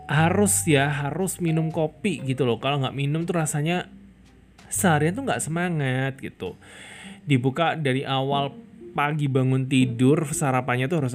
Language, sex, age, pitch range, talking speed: Indonesian, male, 20-39, 120-175 Hz, 135 wpm